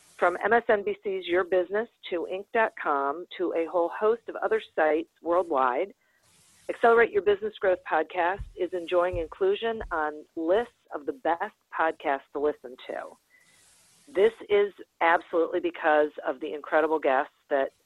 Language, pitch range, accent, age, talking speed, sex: English, 155-220 Hz, American, 40-59, 135 wpm, female